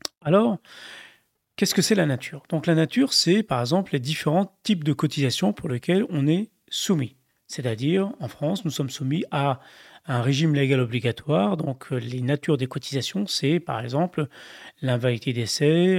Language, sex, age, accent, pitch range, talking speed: French, male, 30-49, French, 135-180 Hz, 160 wpm